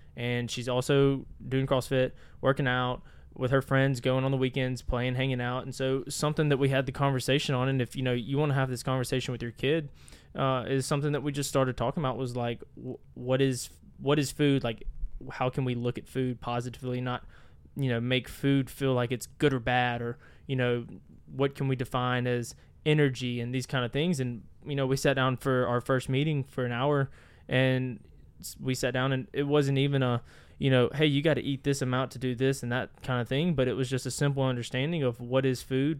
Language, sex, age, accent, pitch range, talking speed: English, male, 20-39, American, 125-135 Hz, 230 wpm